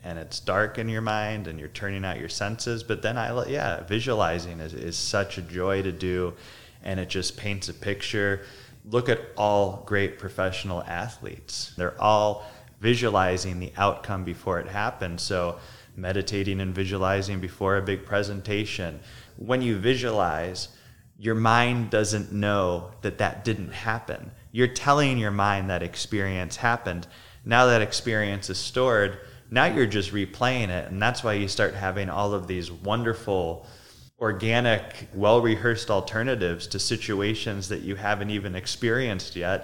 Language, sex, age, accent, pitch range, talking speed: English, male, 20-39, American, 95-115 Hz, 155 wpm